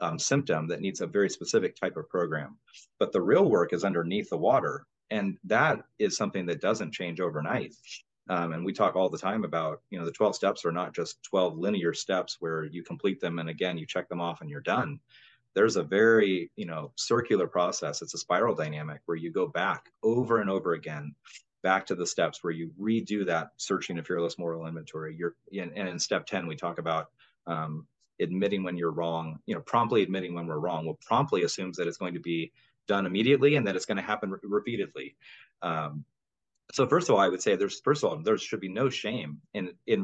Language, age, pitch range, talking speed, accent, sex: English, 30-49, 80-95 Hz, 220 wpm, American, male